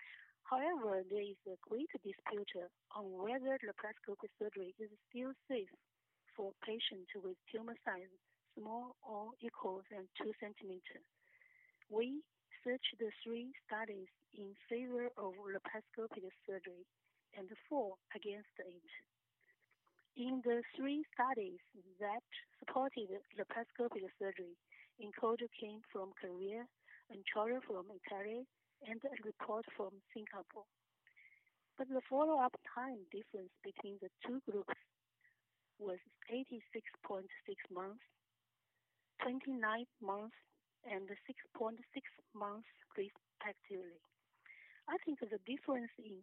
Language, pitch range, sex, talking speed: English, 195-255 Hz, female, 110 wpm